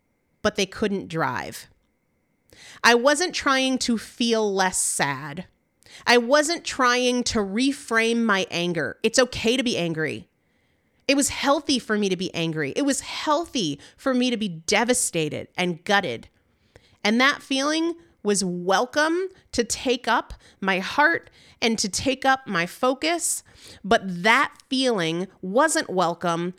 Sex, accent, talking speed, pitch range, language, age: female, American, 140 wpm, 180-255 Hz, English, 30-49